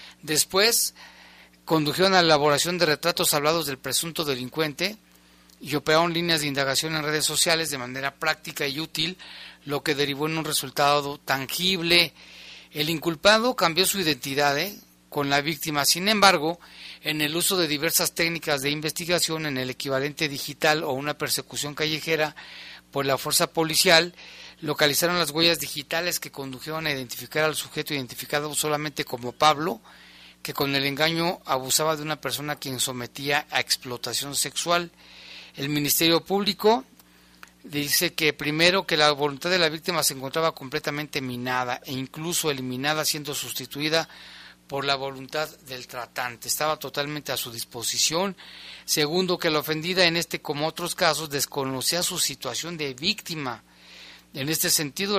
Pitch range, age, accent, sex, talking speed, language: 135-165 Hz, 40-59, Mexican, male, 150 wpm, Spanish